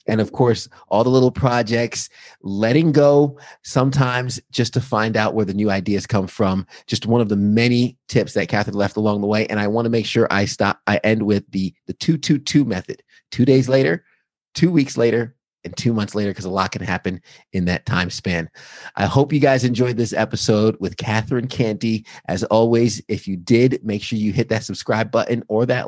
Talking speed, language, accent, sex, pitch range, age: 215 wpm, English, American, male, 105-125 Hz, 30-49